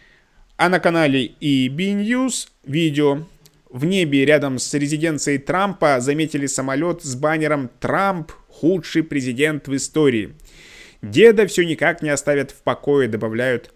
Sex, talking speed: male, 125 wpm